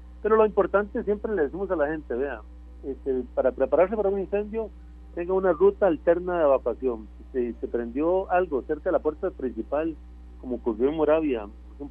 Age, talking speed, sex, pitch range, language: 50-69, 185 wpm, male, 115-180 Hz, Spanish